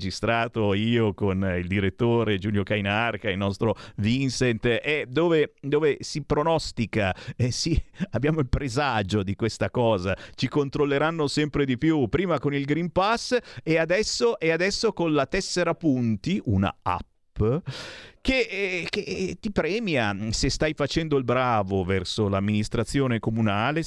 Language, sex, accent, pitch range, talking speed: Italian, male, native, 110-165 Hz, 145 wpm